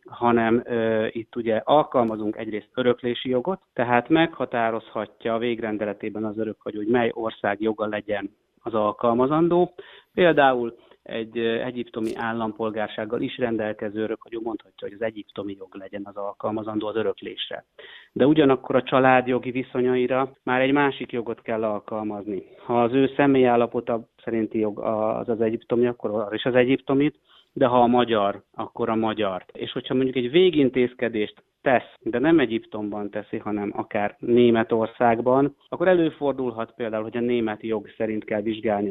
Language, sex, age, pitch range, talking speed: Hungarian, male, 30-49, 110-130 Hz, 145 wpm